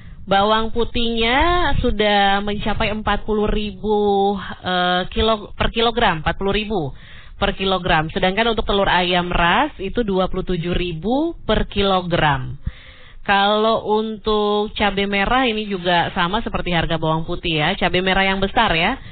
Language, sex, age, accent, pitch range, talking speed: Indonesian, female, 20-39, native, 175-230 Hz, 130 wpm